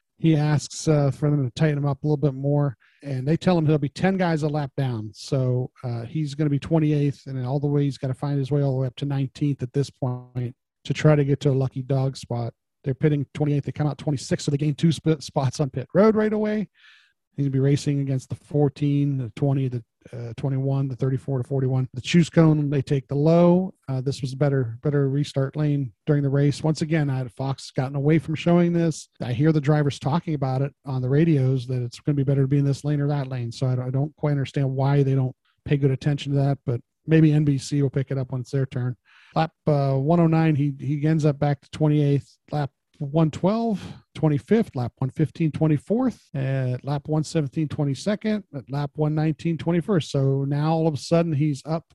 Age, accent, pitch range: 40-59, American, 135-155 Hz